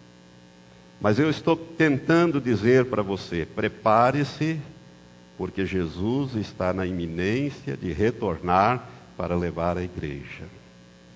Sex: male